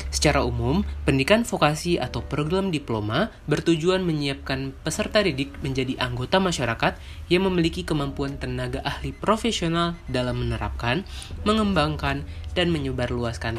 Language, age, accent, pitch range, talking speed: Indonesian, 20-39, native, 115-160 Hz, 110 wpm